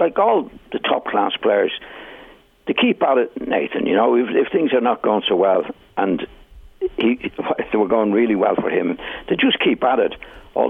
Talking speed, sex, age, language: 200 wpm, male, 60-79, English